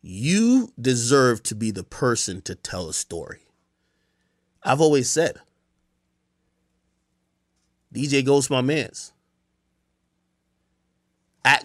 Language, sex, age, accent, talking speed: English, male, 30-49, American, 95 wpm